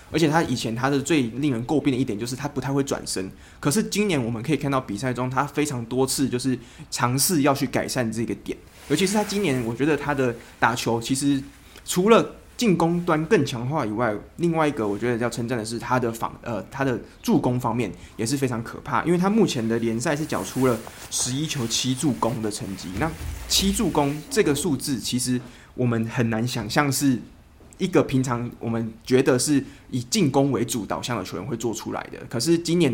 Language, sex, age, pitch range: Chinese, male, 20-39, 115-145 Hz